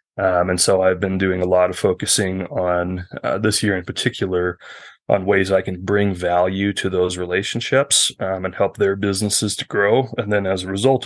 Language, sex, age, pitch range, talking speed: English, male, 20-39, 90-105 Hz, 200 wpm